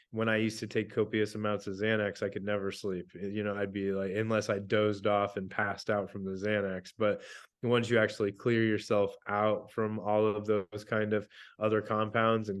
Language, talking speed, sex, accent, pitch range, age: English, 210 wpm, male, American, 105-115 Hz, 20-39